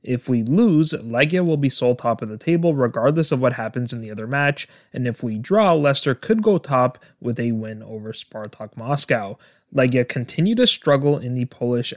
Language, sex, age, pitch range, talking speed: English, male, 20-39, 115-150 Hz, 200 wpm